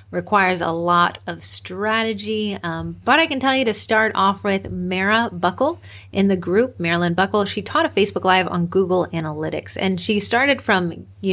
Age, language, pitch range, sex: 30-49, English, 175-220 Hz, female